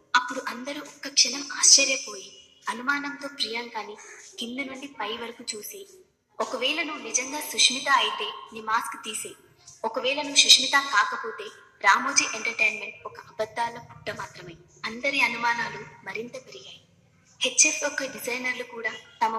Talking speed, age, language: 120 wpm, 20-39, Telugu